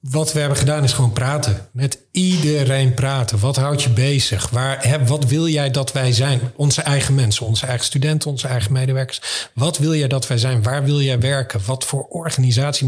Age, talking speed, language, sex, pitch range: 40-59, 195 wpm, Dutch, male, 115-140 Hz